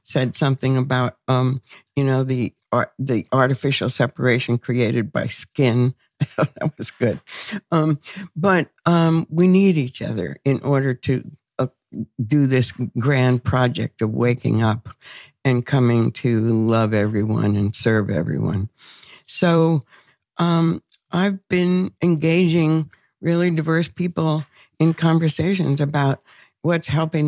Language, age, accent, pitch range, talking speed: English, 60-79, American, 125-160 Hz, 130 wpm